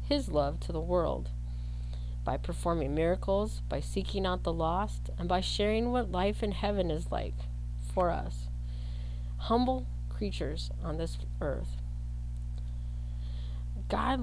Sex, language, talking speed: female, English, 125 wpm